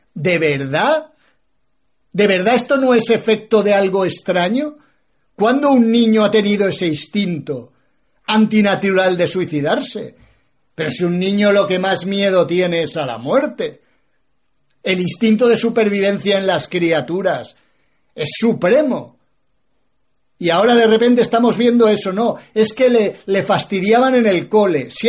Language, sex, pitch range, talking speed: Spanish, male, 160-230 Hz, 145 wpm